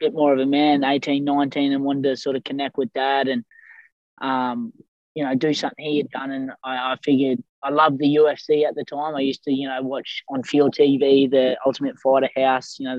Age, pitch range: 20-39, 130-150 Hz